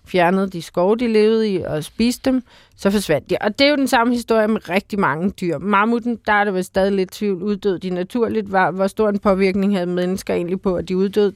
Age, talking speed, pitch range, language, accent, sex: 30-49, 240 wpm, 190-225 Hz, Danish, native, female